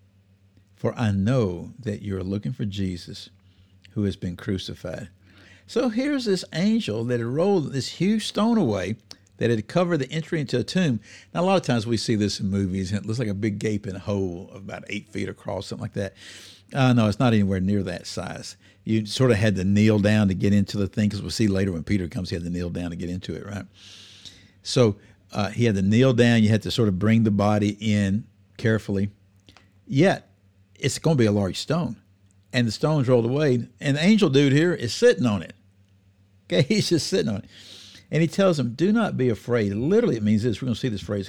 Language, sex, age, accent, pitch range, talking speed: English, male, 60-79, American, 95-120 Hz, 225 wpm